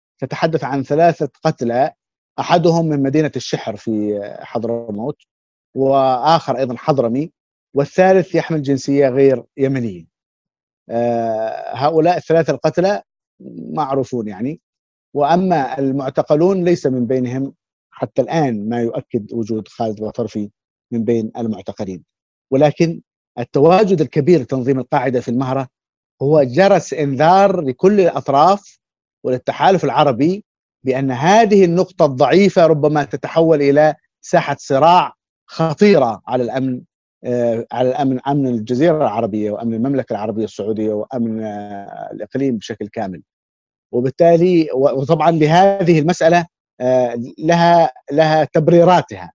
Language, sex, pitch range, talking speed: Arabic, male, 120-165 Hz, 100 wpm